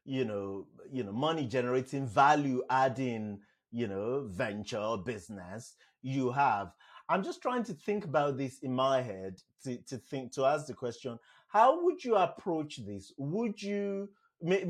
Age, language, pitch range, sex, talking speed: 30-49, English, 125-165 Hz, male, 165 wpm